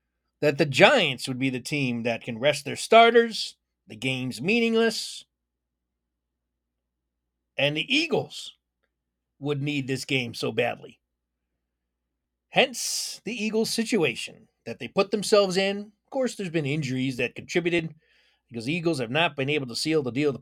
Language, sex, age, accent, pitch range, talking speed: English, male, 30-49, American, 110-155 Hz, 155 wpm